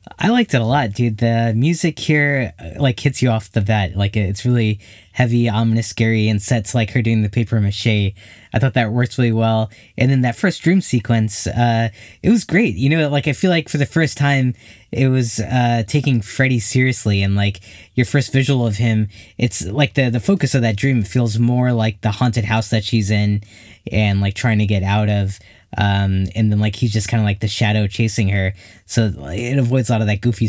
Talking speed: 225 wpm